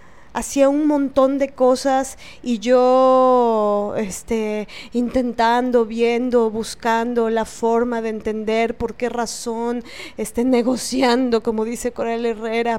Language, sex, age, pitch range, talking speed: Spanish, female, 20-39, 230-280 Hz, 105 wpm